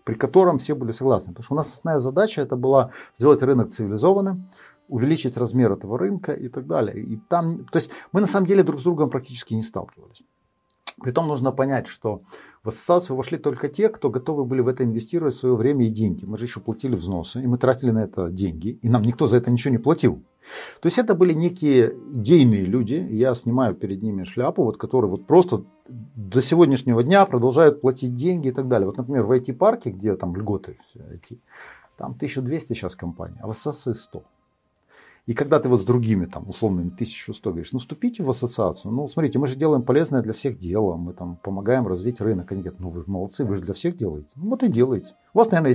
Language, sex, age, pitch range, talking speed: Russian, male, 50-69, 110-160 Hz, 210 wpm